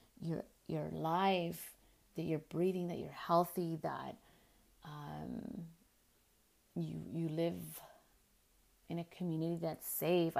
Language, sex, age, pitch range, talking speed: English, female, 30-49, 155-195 Hz, 110 wpm